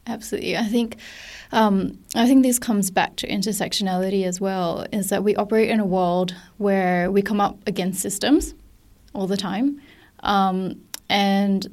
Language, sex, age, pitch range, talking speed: English, female, 10-29, 190-215 Hz, 160 wpm